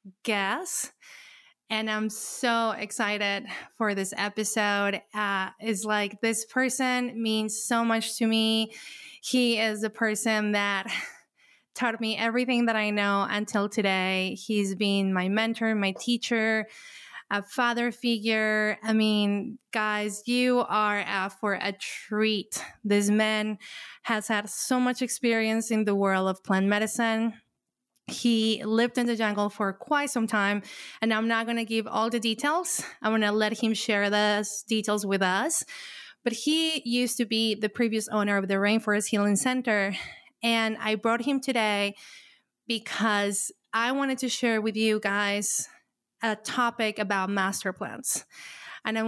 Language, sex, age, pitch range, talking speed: English, female, 20-39, 205-235 Hz, 150 wpm